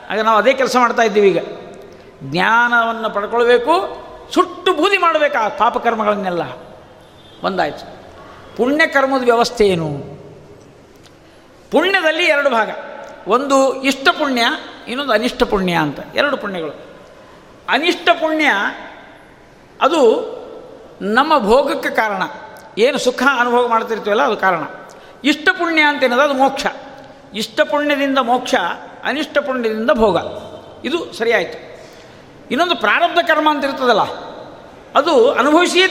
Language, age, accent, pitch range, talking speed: Kannada, 50-69, native, 235-315 Hz, 105 wpm